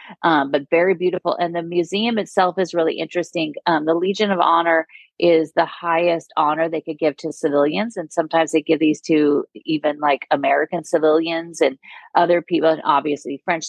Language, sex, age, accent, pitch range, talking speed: English, female, 40-59, American, 150-175 Hz, 175 wpm